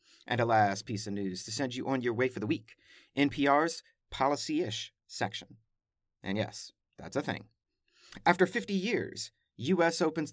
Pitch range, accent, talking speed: 110-160 Hz, American, 165 wpm